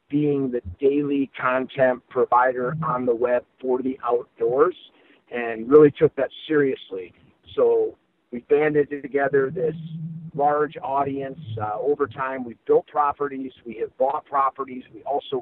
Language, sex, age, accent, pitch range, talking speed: English, male, 50-69, American, 125-160 Hz, 135 wpm